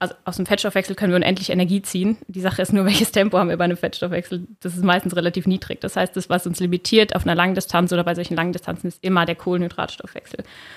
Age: 20-39